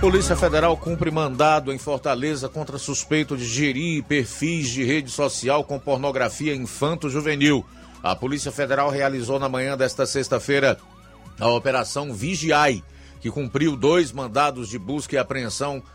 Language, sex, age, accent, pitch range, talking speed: Portuguese, male, 50-69, Brazilian, 125-150 Hz, 135 wpm